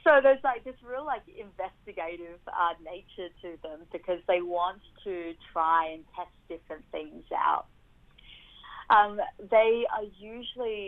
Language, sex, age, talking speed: English, female, 30-49, 140 wpm